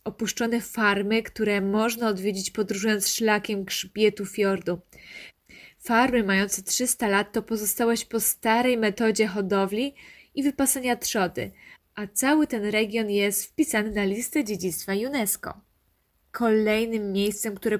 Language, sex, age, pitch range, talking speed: Polish, female, 20-39, 205-235 Hz, 120 wpm